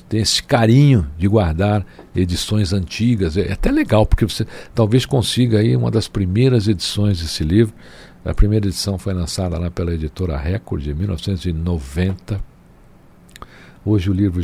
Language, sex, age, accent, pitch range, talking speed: Portuguese, male, 60-79, Brazilian, 90-115 Hz, 145 wpm